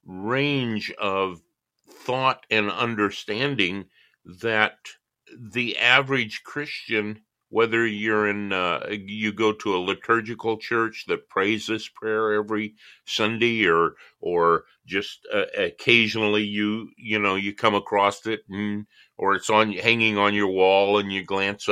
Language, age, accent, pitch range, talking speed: English, 50-69, American, 100-120 Hz, 135 wpm